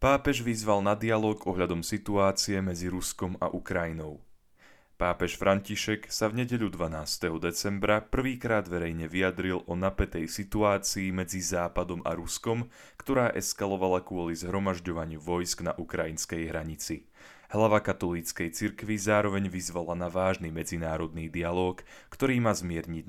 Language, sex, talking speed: Slovak, male, 120 wpm